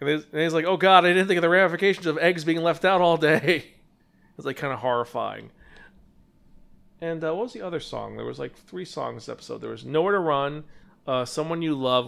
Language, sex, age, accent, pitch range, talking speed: English, male, 40-59, American, 135-180 Hz, 230 wpm